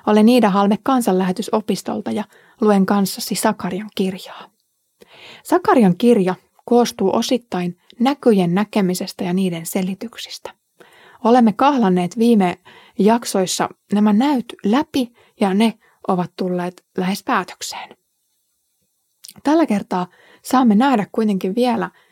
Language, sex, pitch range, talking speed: Finnish, female, 190-250 Hz, 100 wpm